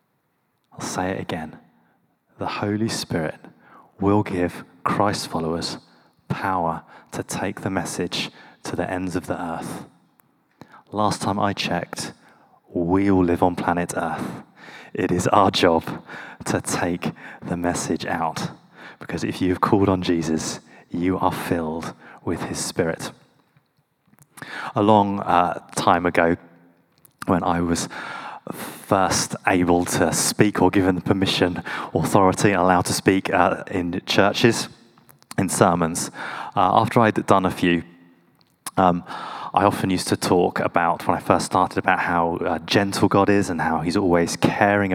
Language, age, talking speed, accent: English, 20-39, 140 wpm, British